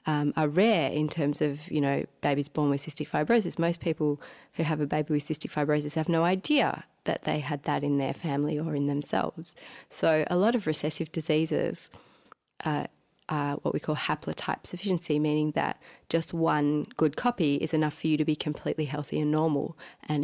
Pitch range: 150-175 Hz